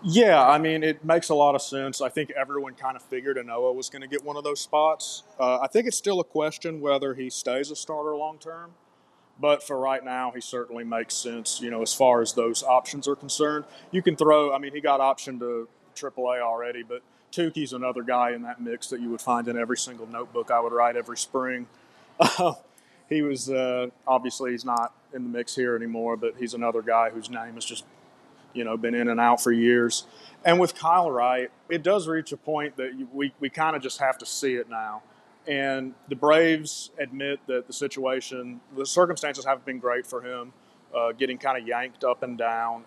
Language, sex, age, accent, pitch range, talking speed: English, male, 30-49, American, 120-150 Hz, 215 wpm